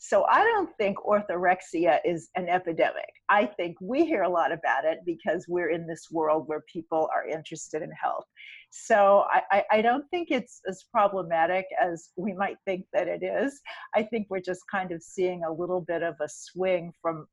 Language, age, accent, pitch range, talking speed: English, 50-69, American, 170-250 Hz, 195 wpm